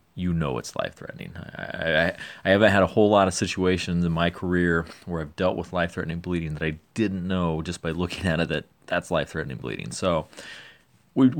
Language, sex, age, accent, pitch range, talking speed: English, male, 30-49, American, 75-95 Hz, 200 wpm